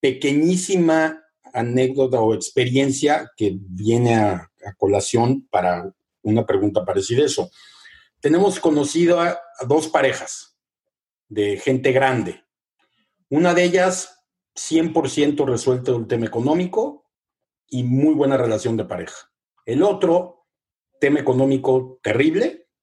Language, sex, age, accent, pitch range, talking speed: Spanish, male, 50-69, Mexican, 130-185 Hz, 115 wpm